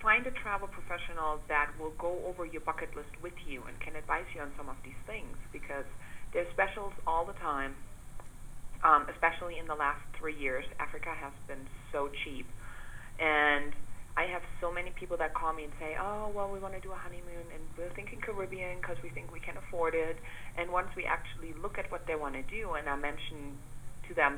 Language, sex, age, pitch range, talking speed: English, female, 40-59, 140-180 Hz, 215 wpm